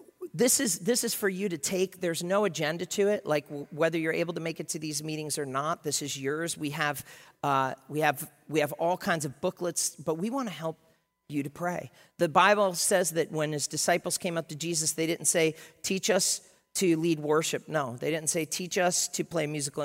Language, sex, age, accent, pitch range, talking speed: English, male, 40-59, American, 145-180 Hz, 235 wpm